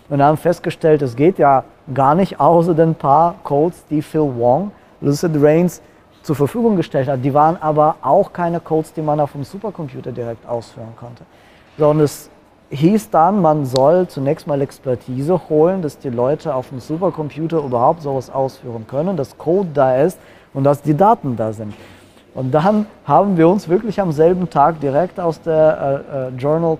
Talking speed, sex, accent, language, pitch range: 175 wpm, male, German, German, 140-165 Hz